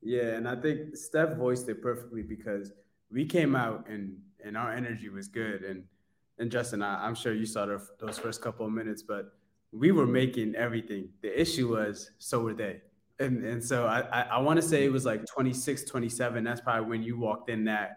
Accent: American